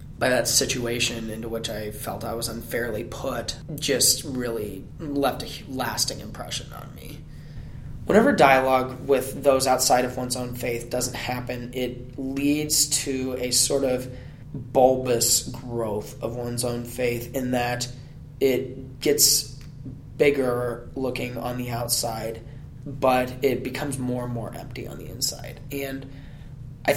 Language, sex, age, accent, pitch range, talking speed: English, male, 20-39, American, 120-135 Hz, 140 wpm